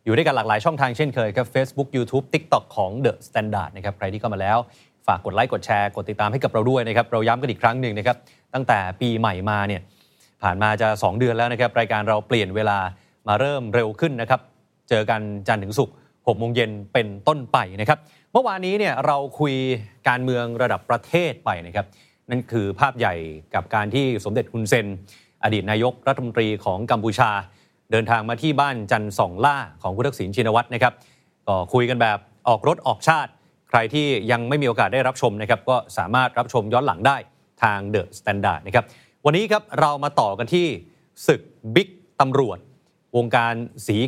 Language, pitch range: Thai, 110-140 Hz